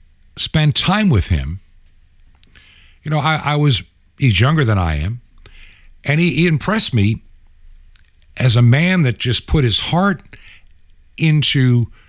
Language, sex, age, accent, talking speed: English, male, 60-79, American, 140 wpm